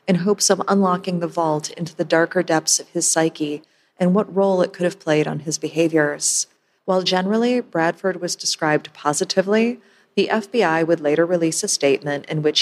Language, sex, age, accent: English, female, 30-49, American